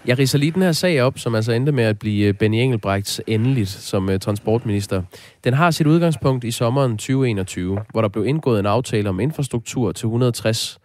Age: 20-39